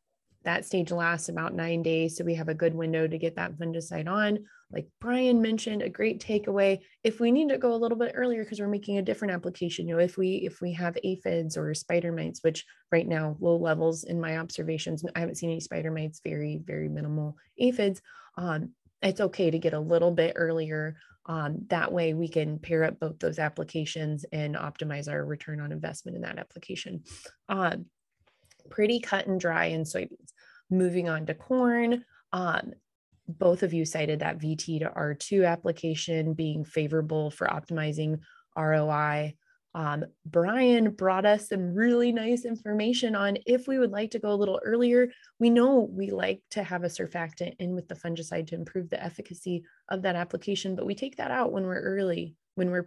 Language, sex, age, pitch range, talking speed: English, female, 20-39, 160-200 Hz, 190 wpm